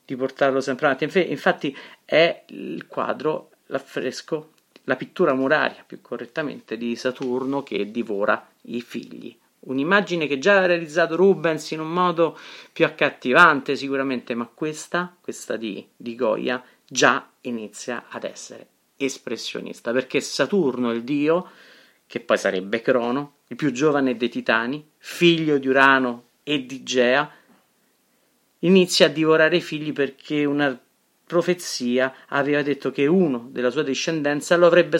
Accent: native